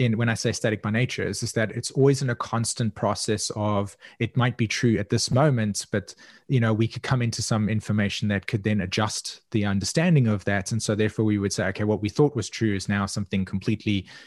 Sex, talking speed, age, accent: male, 235 wpm, 20-39, Australian